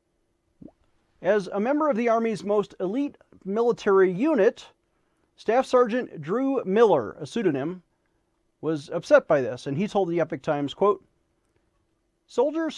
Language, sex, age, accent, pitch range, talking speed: English, male, 40-59, American, 160-220 Hz, 130 wpm